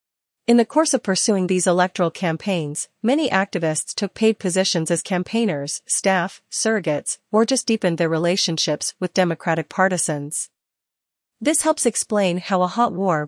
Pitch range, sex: 170-205 Hz, female